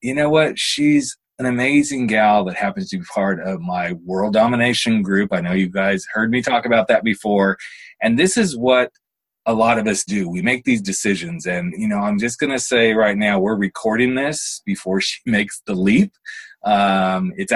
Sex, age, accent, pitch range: male, 30-49, American, 105-170 Hz